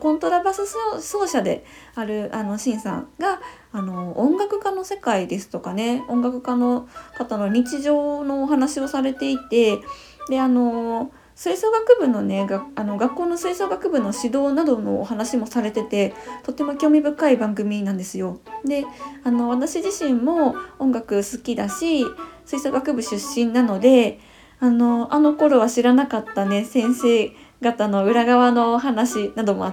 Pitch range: 220-290 Hz